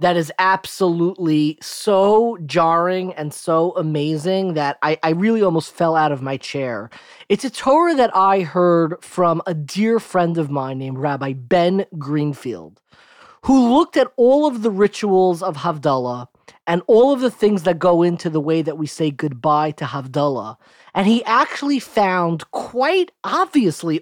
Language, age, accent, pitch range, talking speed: English, 20-39, American, 155-210 Hz, 160 wpm